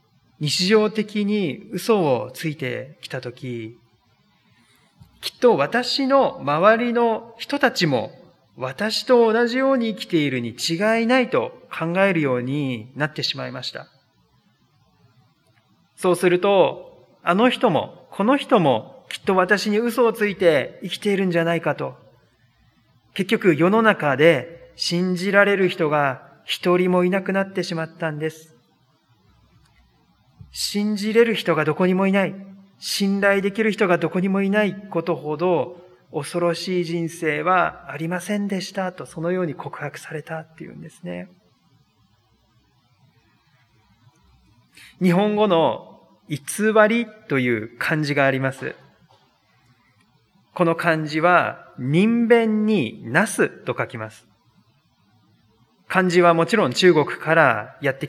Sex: male